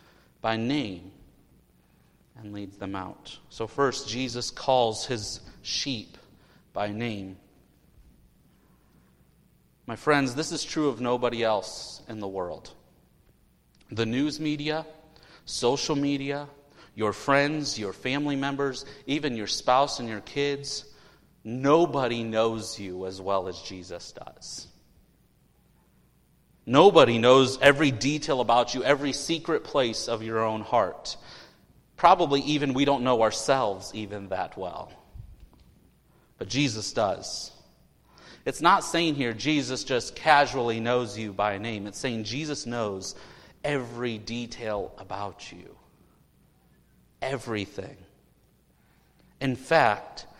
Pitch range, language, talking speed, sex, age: 105-140 Hz, English, 115 wpm, male, 30-49